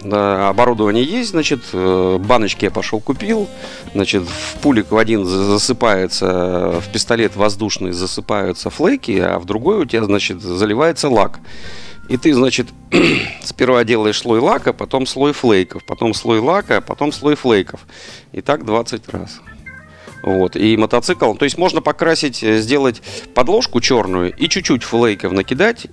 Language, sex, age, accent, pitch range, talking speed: Russian, male, 40-59, native, 95-125 Hz, 140 wpm